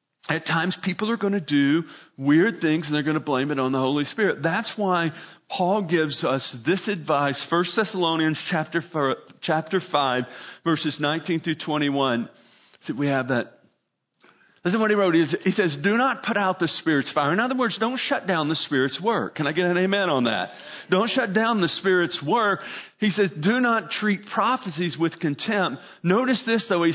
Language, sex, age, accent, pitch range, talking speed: English, male, 50-69, American, 150-190 Hz, 190 wpm